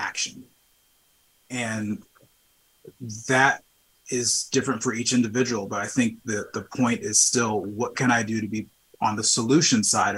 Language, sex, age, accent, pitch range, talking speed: English, male, 30-49, American, 105-125 Hz, 155 wpm